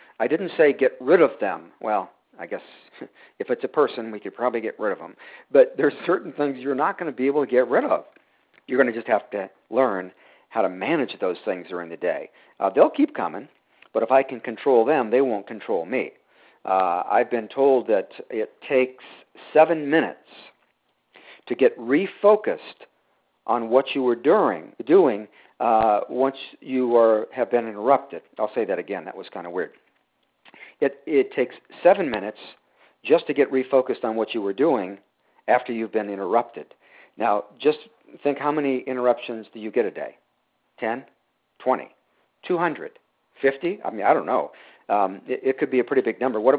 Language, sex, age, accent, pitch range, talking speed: English, male, 50-69, American, 115-150 Hz, 185 wpm